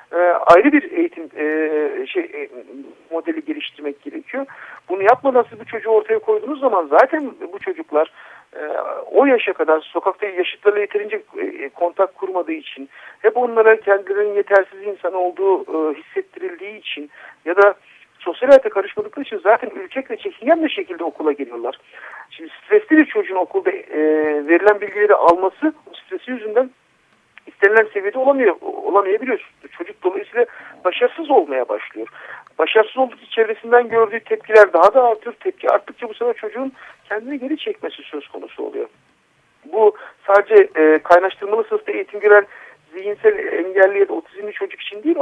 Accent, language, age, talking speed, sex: native, Turkish, 50-69, 140 wpm, male